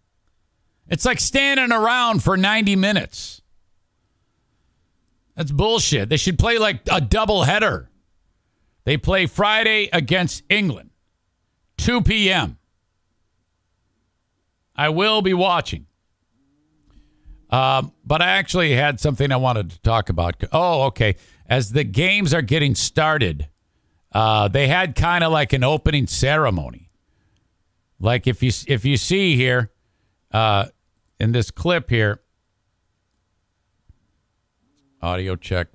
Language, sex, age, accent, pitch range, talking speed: English, male, 50-69, American, 100-155 Hz, 115 wpm